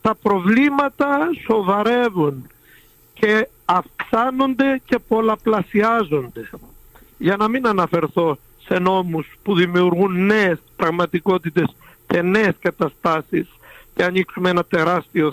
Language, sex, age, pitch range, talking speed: Greek, male, 60-79, 160-220 Hz, 95 wpm